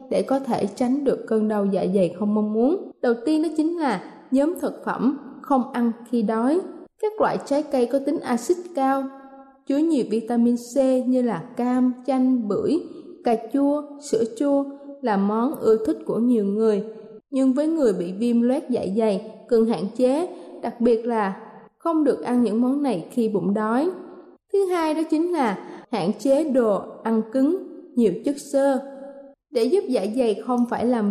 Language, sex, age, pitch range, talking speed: Vietnamese, female, 20-39, 220-285 Hz, 185 wpm